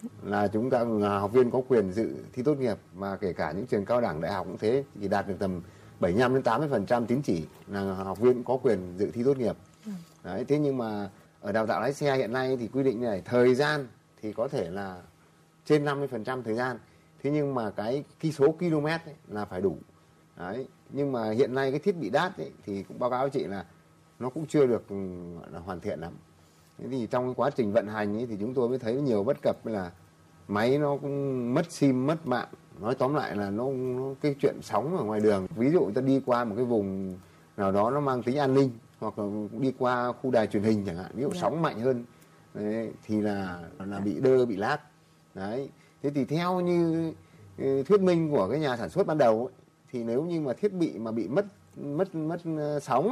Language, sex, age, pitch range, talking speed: Vietnamese, male, 30-49, 105-145 Hz, 225 wpm